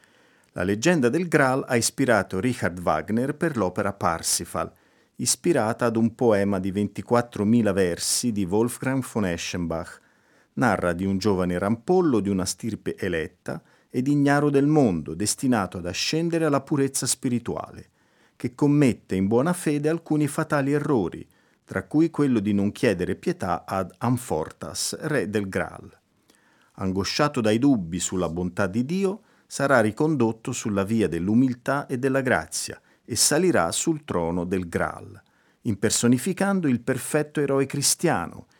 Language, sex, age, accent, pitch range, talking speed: Italian, male, 40-59, native, 100-140 Hz, 135 wpm